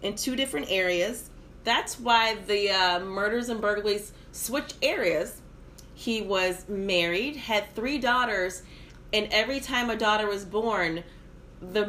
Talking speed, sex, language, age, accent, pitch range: 135 wpm, female, English, 30-49, American, 175-245 Hz